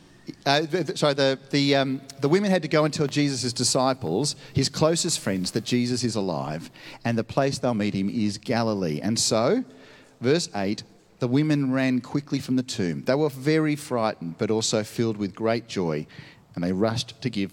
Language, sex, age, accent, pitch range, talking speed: English, male, 40-59, Australian, 120-155 Hz, 180 wpm